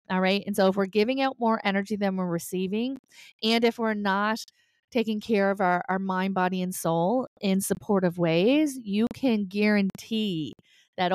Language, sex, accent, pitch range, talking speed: English, female, American, 175-210 Hz, 180 wpm